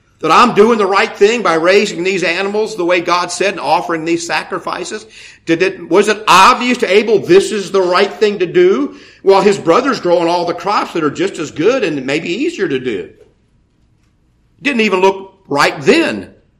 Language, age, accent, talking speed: English, 50-69, American, 195 wpm